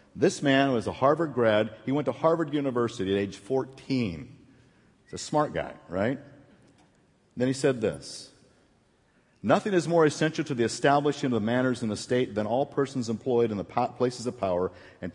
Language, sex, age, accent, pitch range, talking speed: English, male, 50-69, American, 110-145 Hz, 180 wpm